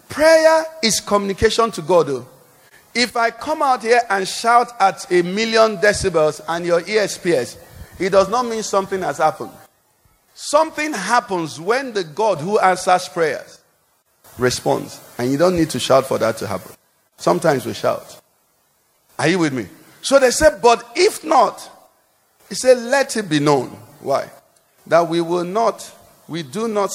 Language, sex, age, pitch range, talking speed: English, male, 50-69, 145-210 Hz, 165 wpm